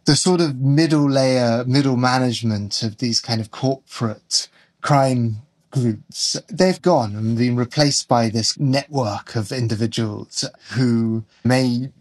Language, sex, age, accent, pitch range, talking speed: English, male, 30-49, British, 110-125 Hz, 130 wpm